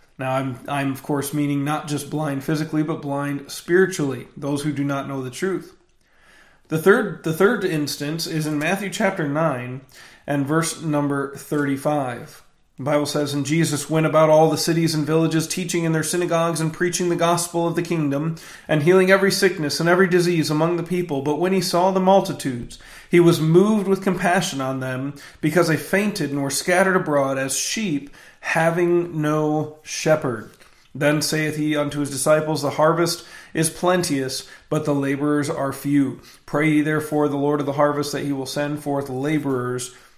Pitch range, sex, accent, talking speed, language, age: 140-165 Hz, male, American, 180 wpm, English, 40-59